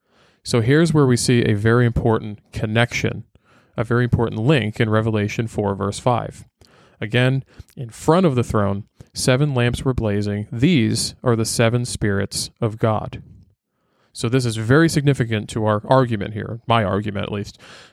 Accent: American